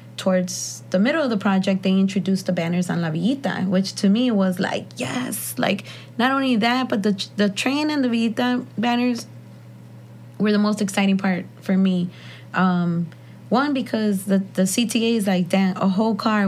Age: 20-39